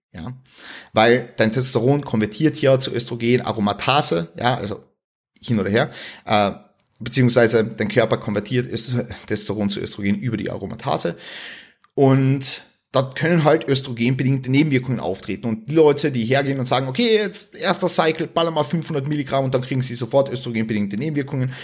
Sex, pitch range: male, 120-165 Hz